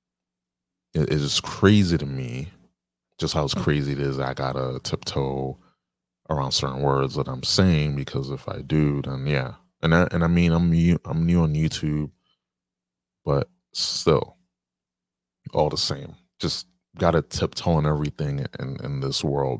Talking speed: 160 wpm